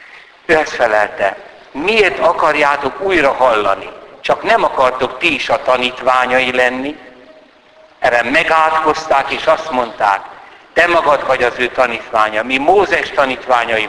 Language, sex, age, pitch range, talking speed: Hungarian, male, 60-79, 125-160 Hz, 125 wpm